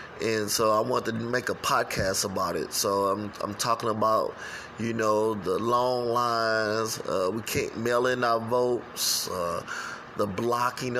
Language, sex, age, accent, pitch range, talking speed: English, male, 20-39, American, 110-140 Hz, 165 wpm